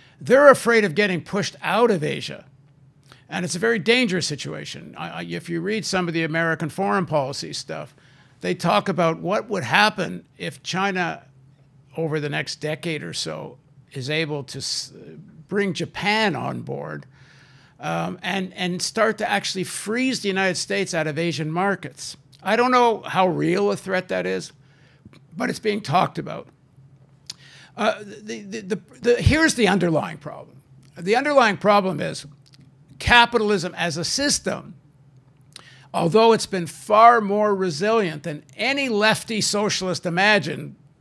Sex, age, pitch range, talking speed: male, 60-79, 145-205 Hz, 150 wpm